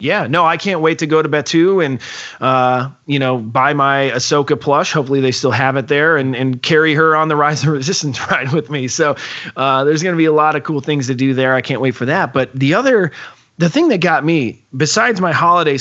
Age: 30-49